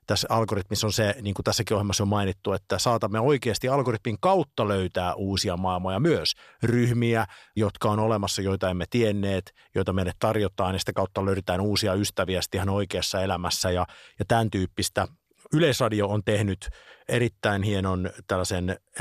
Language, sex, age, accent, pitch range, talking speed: Finnish, male, 50-69, native, 95-125 Hz, 150 wpm